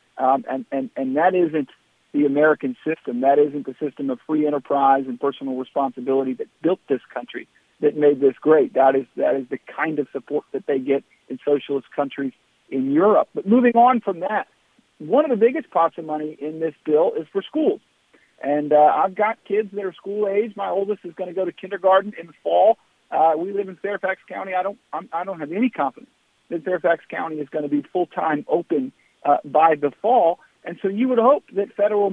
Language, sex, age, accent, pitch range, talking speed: English, male, 50-69, American, 150-215 Hz, 215 wpm